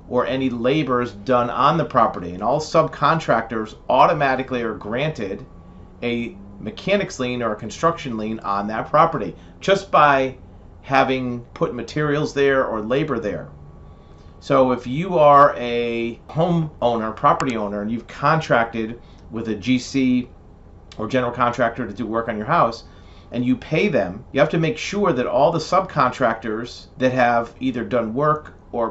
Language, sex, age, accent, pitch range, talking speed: English, male, 40-59, American, 105-135 Hz, 155 wpm